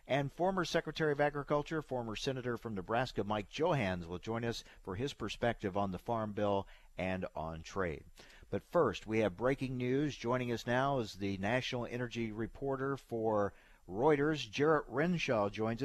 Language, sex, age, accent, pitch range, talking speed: English, male, 50-69, American, 100-130 Hz, 165 wpm